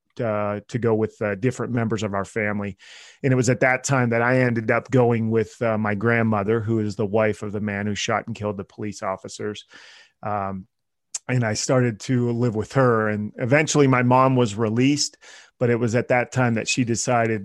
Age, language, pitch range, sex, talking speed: 30-49, English, 105-120 Hz, male, 215 wpm